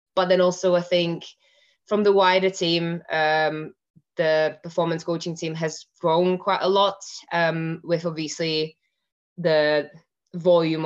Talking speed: 135 wpm